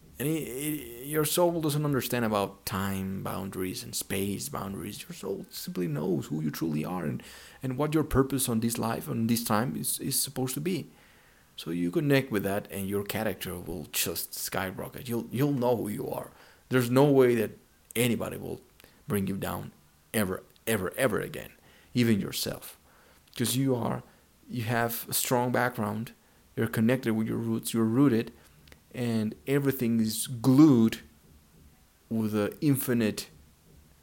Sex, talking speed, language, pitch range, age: male, 160 wpm, English, 85-130 Hz, 30-49